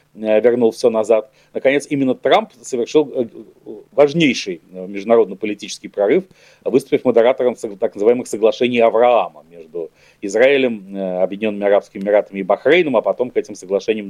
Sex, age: male, 40-59